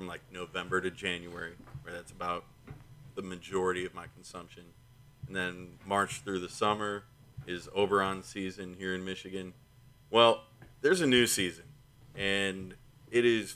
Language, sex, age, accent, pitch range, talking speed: English, male, 30-49, American, 95-125 Hz, 150 wpm